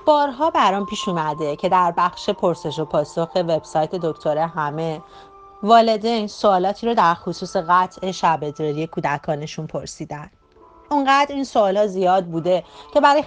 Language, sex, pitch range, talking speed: English, female, 165-220 Hz, 140 wpm